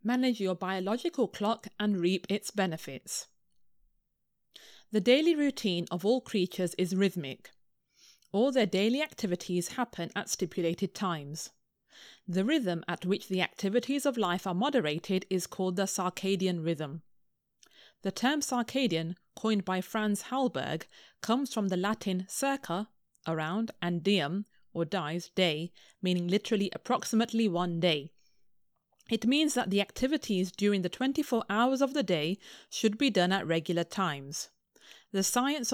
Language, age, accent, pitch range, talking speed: English, 30-49, British, 180-235 Hz, 140 wpm